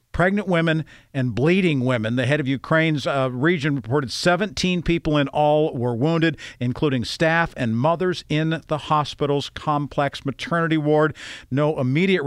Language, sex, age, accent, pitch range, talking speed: English, male, 50-69, American, 125-160 Hz, 145 wpm